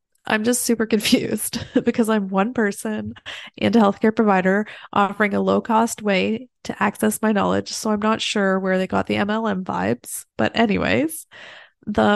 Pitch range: 190-225 Hz